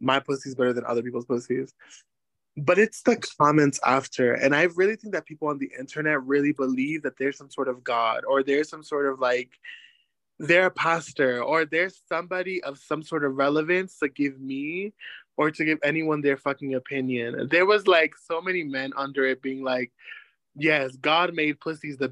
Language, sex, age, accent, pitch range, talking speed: English, male, 20-39, American, 130-160 Hz, 195 wpm